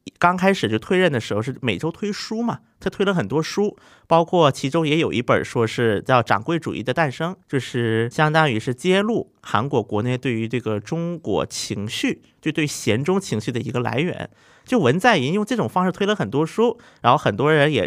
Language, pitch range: Chinese, 120-180 Hz